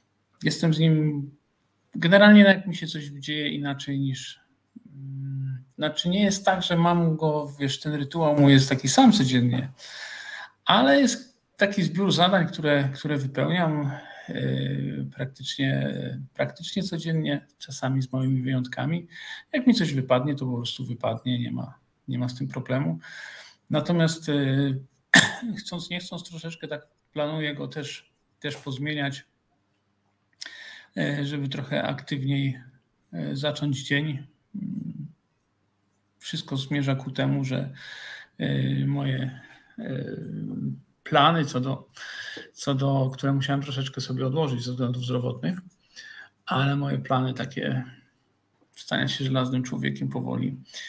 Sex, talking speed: male, 120 wpm